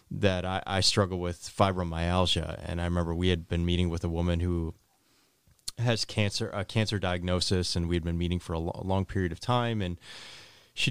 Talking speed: 195 wpm